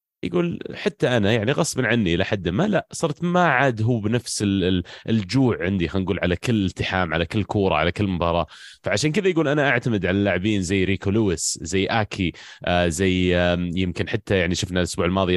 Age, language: 30-49, Arabic